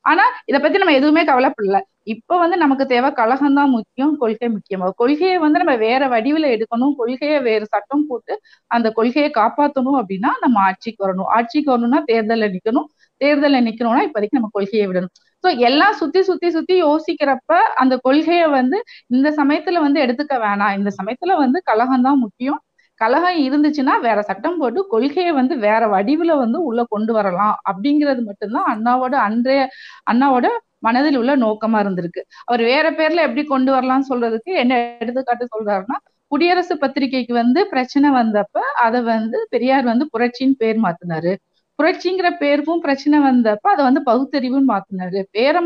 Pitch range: 225-295 Hz